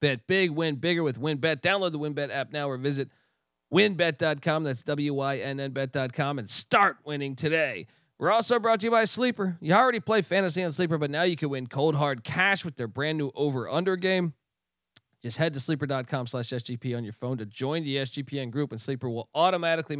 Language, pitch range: English, 135-180 Hz